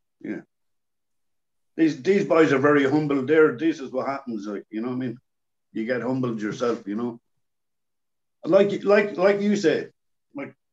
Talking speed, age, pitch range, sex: 170 wpm, 50-69, 115-155 Hz, male